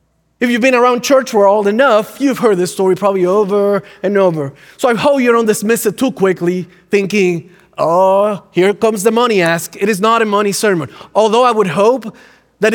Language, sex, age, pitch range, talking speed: English, male, 30-49, 180-230 Hz, 200 wpm